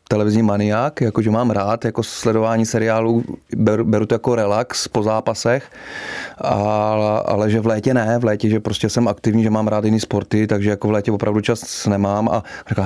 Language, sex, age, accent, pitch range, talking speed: Czech, male, 30-49, native, 105-115 Hz, 190 wpm